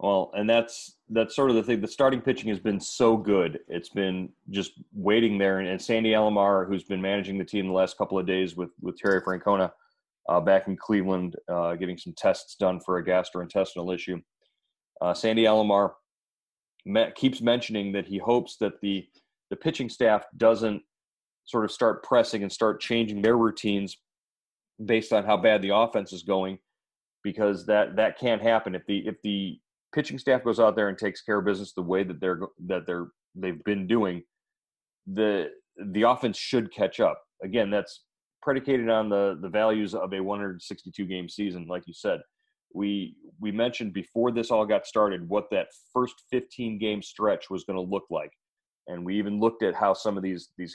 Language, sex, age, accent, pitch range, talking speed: English, male, 30-49, American, 95-115 Hz, 190 wpm